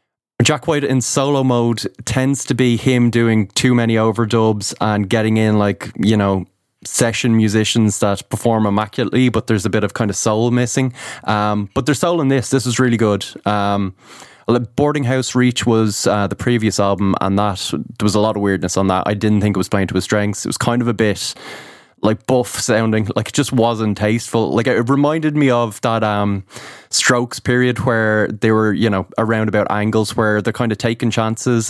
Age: 20-39